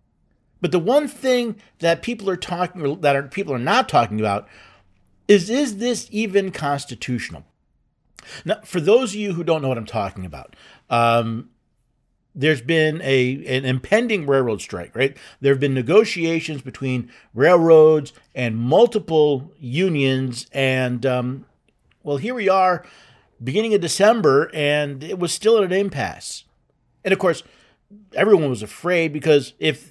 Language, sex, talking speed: English, male, 150 wpm